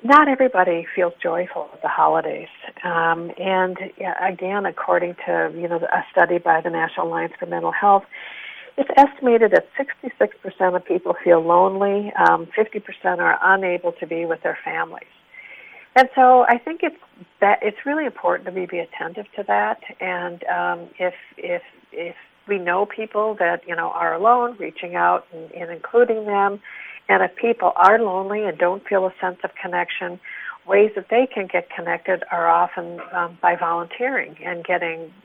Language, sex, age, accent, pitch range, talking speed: English, female, 50-69, American, 175-230 Hz, 170 wpm